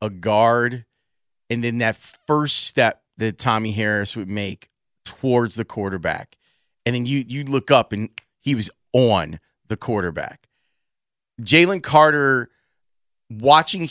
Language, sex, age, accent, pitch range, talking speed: English, male, 30-49, American, 115-140 Hz, 130 wpm